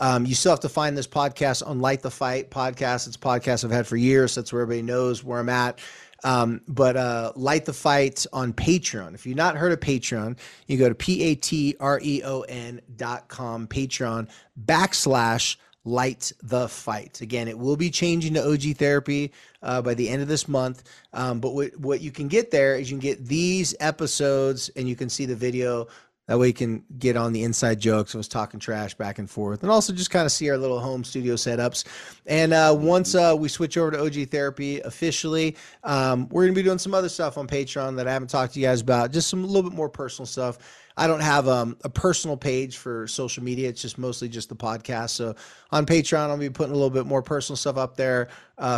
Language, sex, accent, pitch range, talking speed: English, male, American, 125-145 Hz, 235 wpm